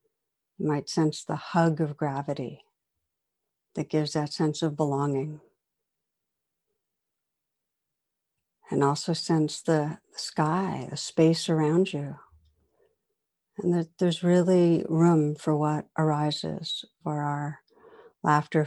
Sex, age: female, 60-79